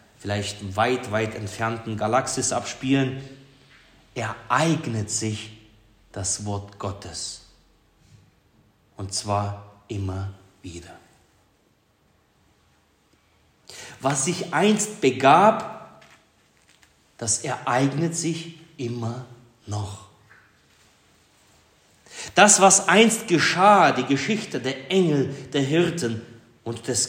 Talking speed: 80 wpm